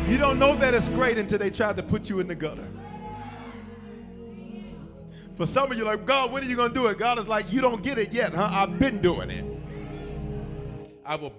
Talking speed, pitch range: 225 wpm, 145-240 Hz